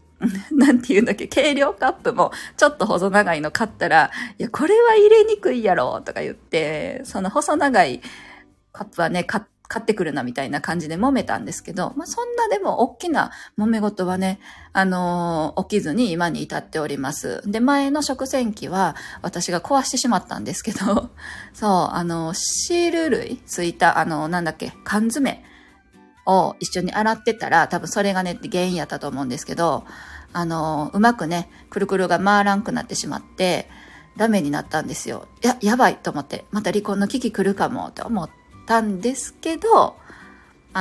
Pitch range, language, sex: 175-245 Hz, Japanese, female